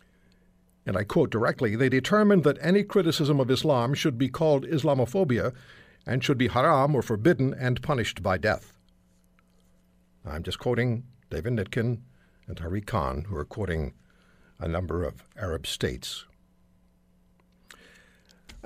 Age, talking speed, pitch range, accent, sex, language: 60-79, 135 wpm, 90-145 Hz, American, male, English